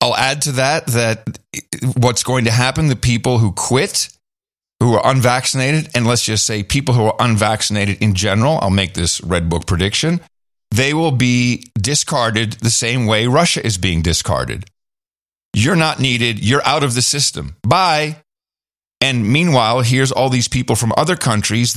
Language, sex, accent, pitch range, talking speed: English, male, American, 110-140 Hz, 170 wpm